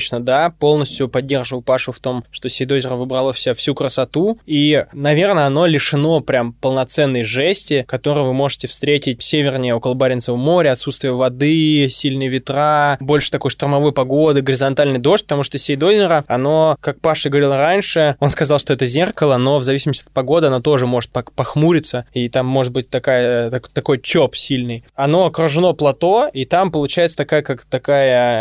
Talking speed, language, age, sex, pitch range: 155 wpm, Russian, 20-39, male, 130-150 Hz